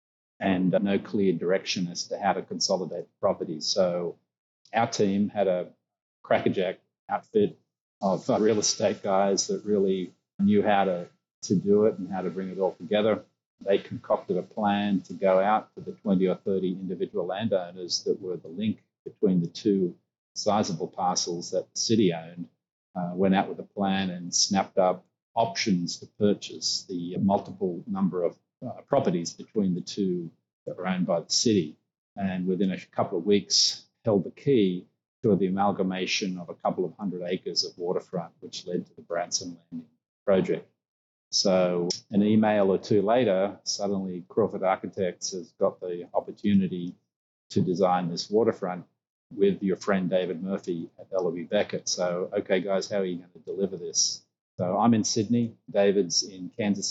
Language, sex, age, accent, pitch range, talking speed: English, male, 40-59, Australian, 90-100 Hz, 170 wpm